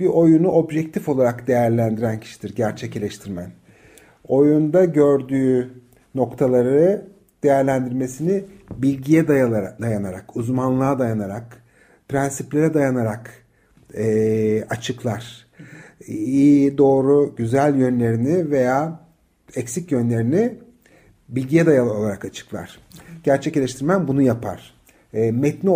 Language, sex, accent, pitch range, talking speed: Turkish, male, native, 125-165 Hz, 85 wpm